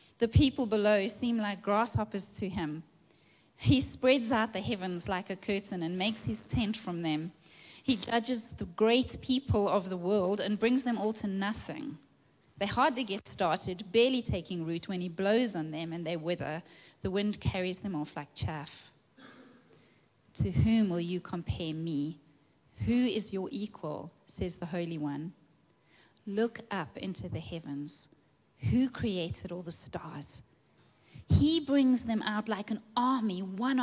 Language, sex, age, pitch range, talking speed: English, female, 30-49, 165-220 Hz, 160 wpm